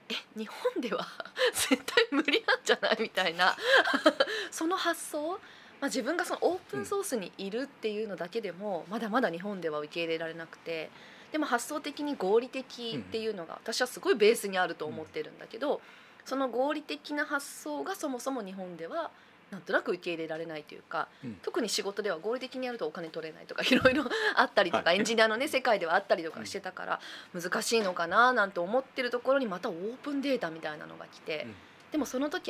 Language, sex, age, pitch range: Japanese, female, 20-39, 180-280 Hz